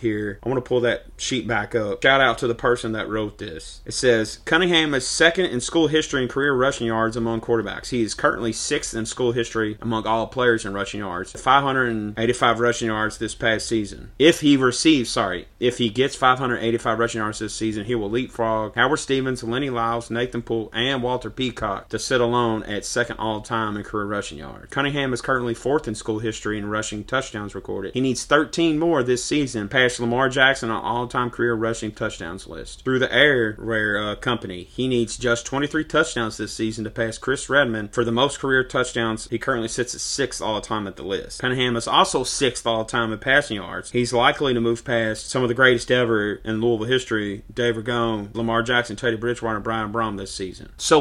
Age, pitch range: 30-49, 110-130 Hz